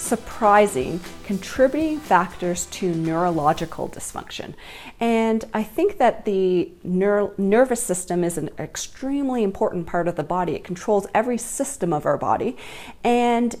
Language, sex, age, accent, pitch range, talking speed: English, female, 30-49, American, 175-205 Hz, 130 wpm